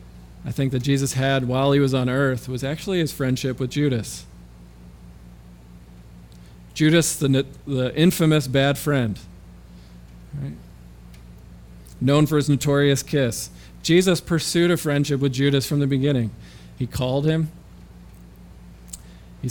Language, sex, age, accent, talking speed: English, male, 40-59, American, 125 wpm